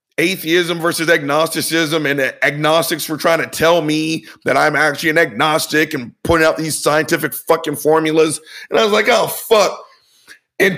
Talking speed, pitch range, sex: 160 wpm, 165-235 Hz, male